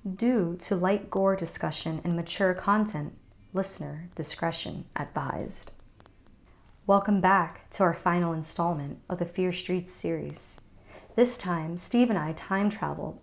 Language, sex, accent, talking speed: English, female, American, 130 wpm